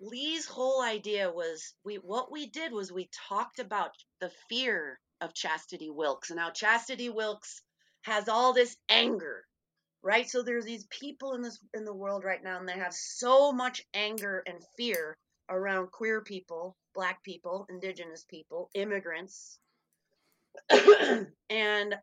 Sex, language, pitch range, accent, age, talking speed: female, English, 180-225 Hz, American, 30-49, 145 wpm